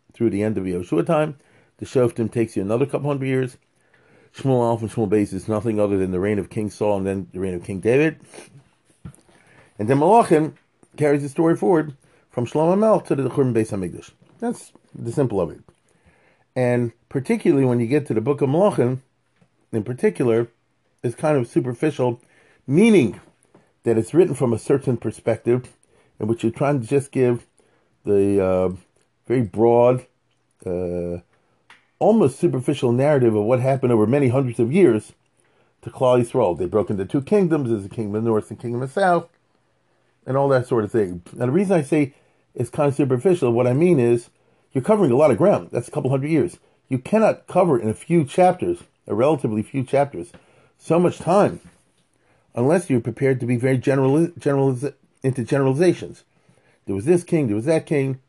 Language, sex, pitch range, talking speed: English, male, 115-150 Hz, 190 wpm